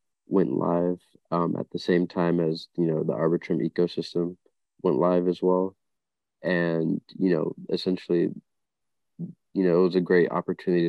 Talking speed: 155 wpm